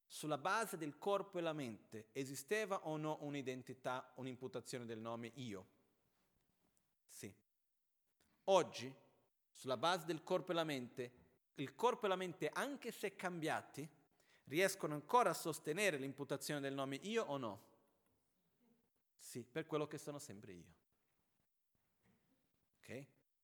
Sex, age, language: male, 40-59, Italian